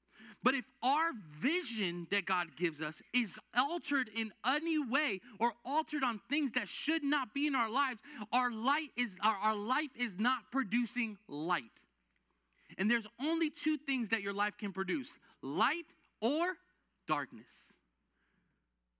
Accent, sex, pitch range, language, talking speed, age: American, male, 165-265 Hz, English, 150 wpm, 30-49